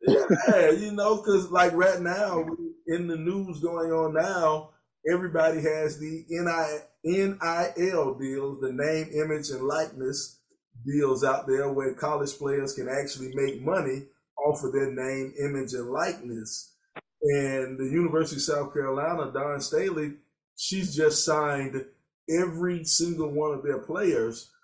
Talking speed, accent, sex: 140 wpm, American, male